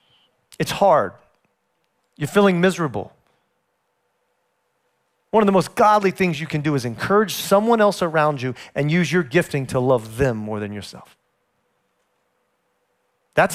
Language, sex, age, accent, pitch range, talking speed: English, male, 40-59, American, 145-225 Hz, 135 wpm